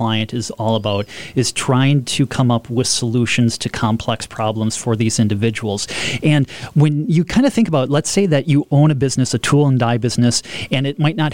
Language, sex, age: English, male, 30-49